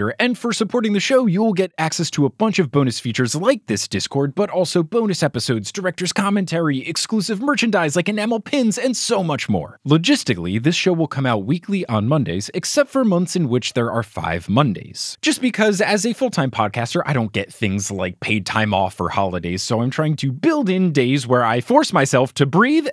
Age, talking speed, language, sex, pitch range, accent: 20-39, 205 wpm, English, male, 115-190 Hz, American